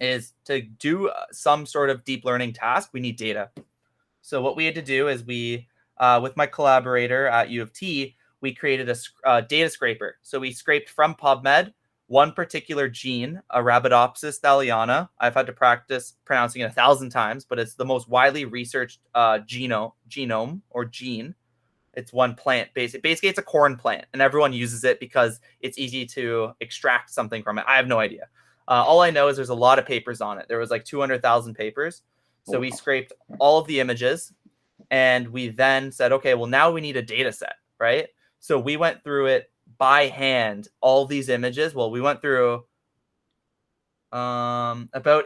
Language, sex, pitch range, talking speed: English, male, 120-145 Hz, 190 wpm